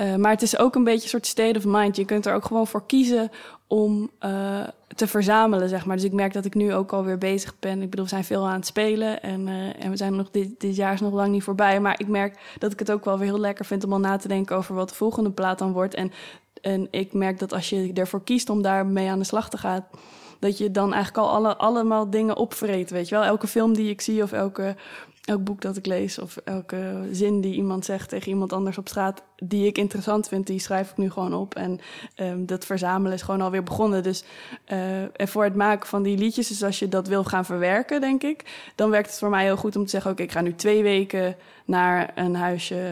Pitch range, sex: 190-210 Hz, female